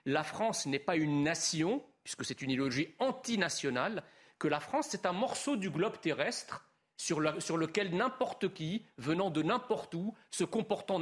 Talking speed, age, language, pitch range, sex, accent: 175 wpm, 40-59, French, 160-240 Hz, male, French